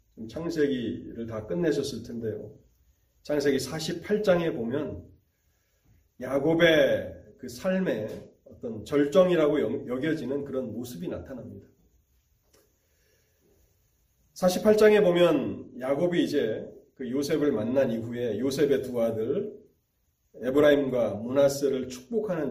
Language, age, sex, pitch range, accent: Korean, 30-49, male, 105-145 Hz, native